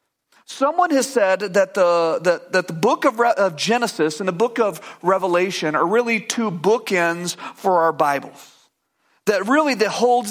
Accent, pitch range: American, 170-220 Hz